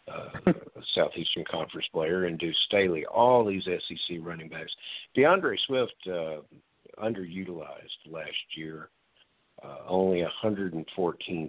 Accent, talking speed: American, 115 wpm